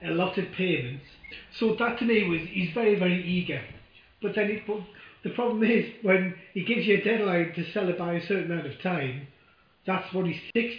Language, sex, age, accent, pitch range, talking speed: English, male, 30-49, British, 160-210 Hz, 215 wpm